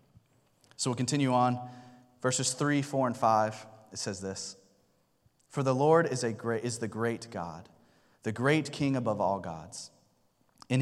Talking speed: 150 wpm